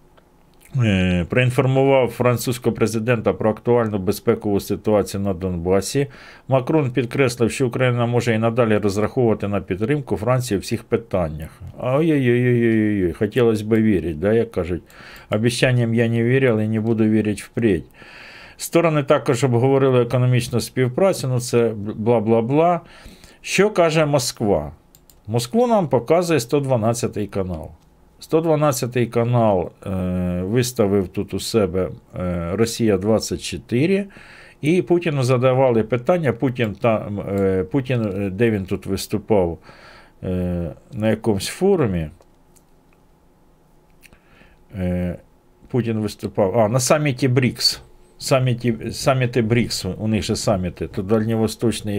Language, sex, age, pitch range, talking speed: Ukrainian, male, 50-69, 105-130 Hz, 110 wpm